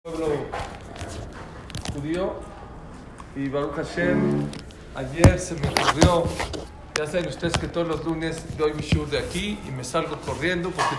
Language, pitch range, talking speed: Spanish, 145-175 Hz, 140 wpm